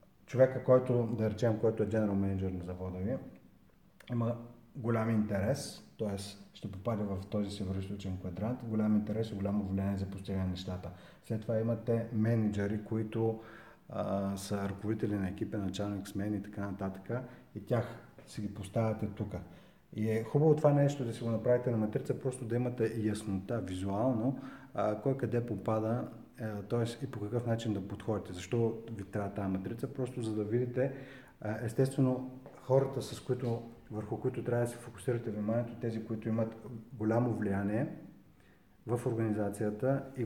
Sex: male